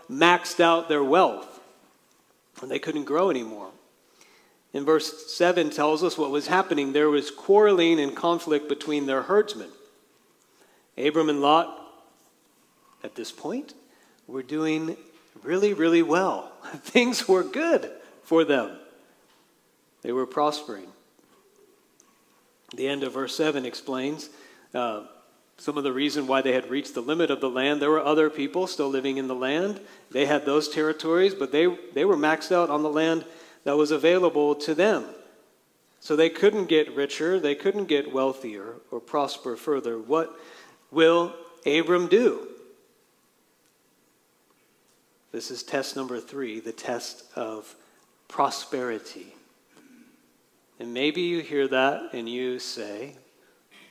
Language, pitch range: English, 140-180 Hz